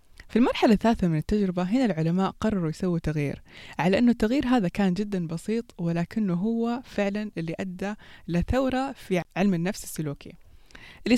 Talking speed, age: 150 wpm, 20-39